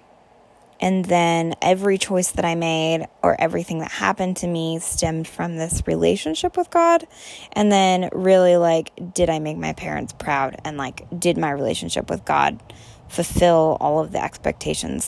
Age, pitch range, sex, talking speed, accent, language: 20-39, 140-185 Hz, female, 165 wpm, American, English